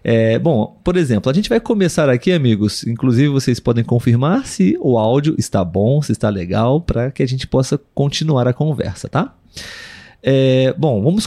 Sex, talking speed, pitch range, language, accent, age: male, 170 wpm, 120-165 Hz, Portuguese, Brazilian, 30-49